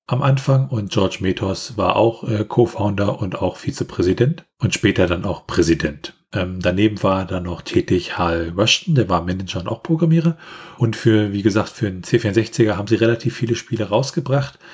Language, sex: German, male